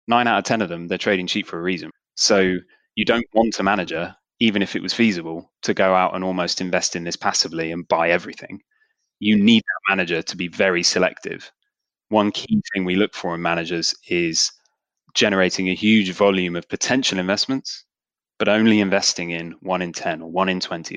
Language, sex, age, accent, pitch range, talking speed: English, male, 20-39, British, 90-110 Hz, 200 wpm